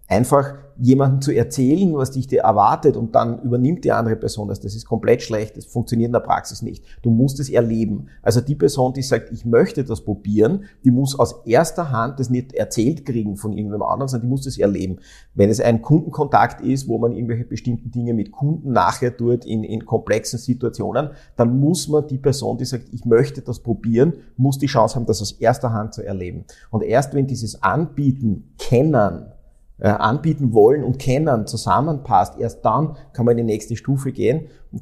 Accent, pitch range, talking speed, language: Austrian, 115-135 Hz, 195 wpm, German